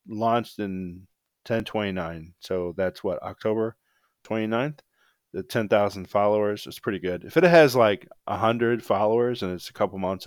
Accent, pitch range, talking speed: American, 90-110 Hz, 170 wpm